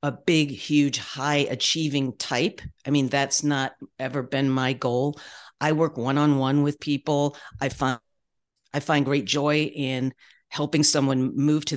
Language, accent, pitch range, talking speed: English, American, 135-165 Hz, 155 wpm